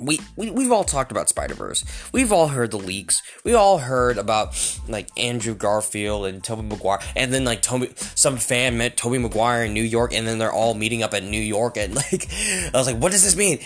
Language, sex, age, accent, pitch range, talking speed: English, male, 10-29, American, 120-180 Hz, 230 wpm